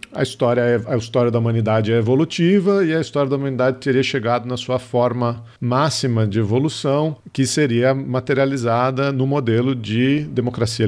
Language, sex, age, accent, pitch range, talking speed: Portuguese, male, 50-69, Brazilian, 110-135 Hz, 160 wpm